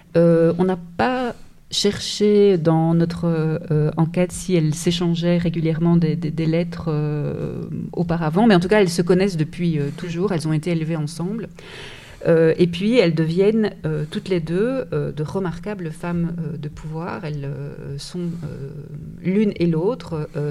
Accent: French